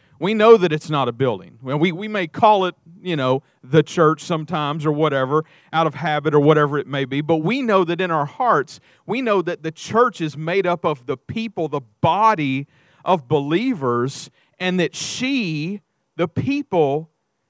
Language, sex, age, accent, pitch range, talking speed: English, male, 40-59, American, 155-205 Hz, 190 wpm